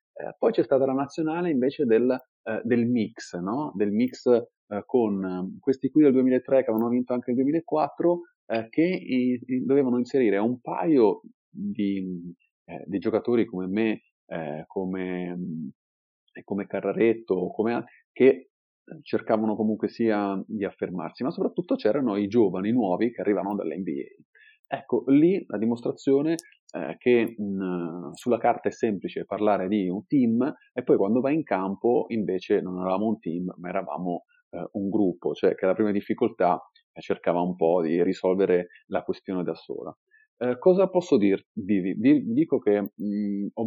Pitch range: 100-140 Hz